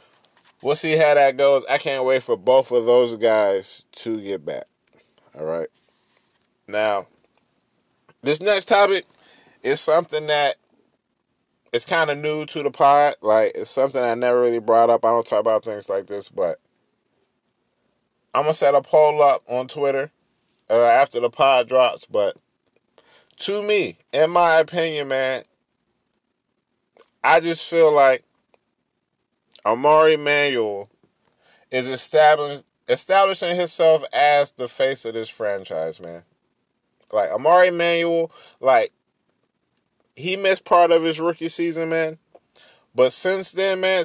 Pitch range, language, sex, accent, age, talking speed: 130-170 Hz, English, male, American, 20-39, 140 wpm